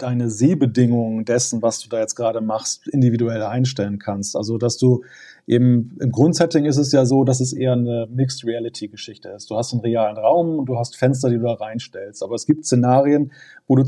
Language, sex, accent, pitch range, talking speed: German, male, German, 120-145 Hz, 205 wpm